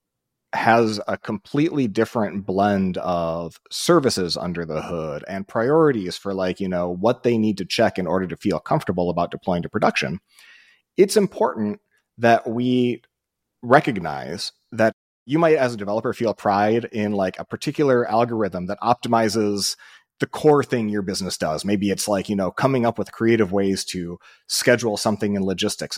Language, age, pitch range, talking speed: English, 30-49, 95-115 Hz, 165 wpm